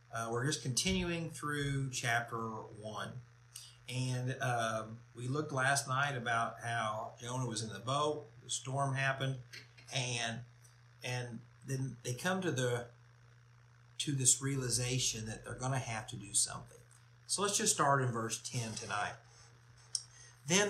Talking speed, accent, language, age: 145 wpm, American, English, 50-69